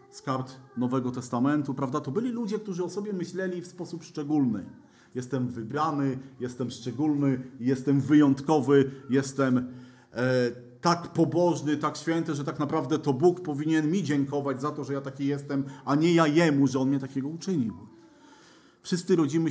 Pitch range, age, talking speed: 135-190 Hz, 40-59, 155 wpm